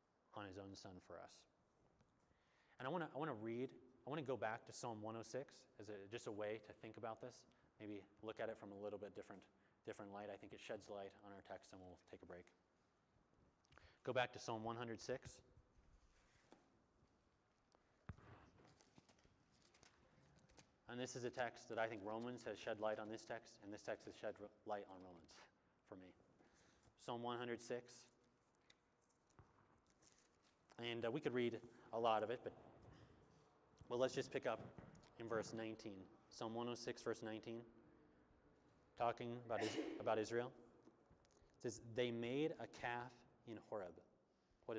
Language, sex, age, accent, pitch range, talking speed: English, male, 30-49, American, 105-120 Hz, 165 wpm